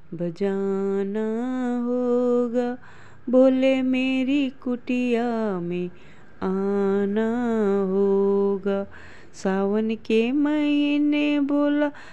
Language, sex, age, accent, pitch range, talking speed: Hindi, female, 20-39, native, 195-250 Hz, 60 wpm